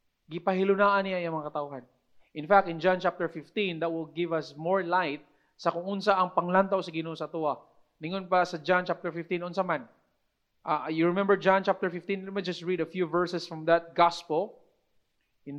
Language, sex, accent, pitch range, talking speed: English, male, Filipino, 175-230 Hz, 190 wpm